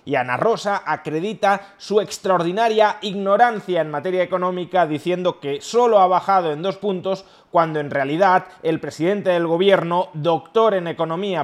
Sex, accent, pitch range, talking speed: male, Spanish, 155-205 Hz, 145 wpm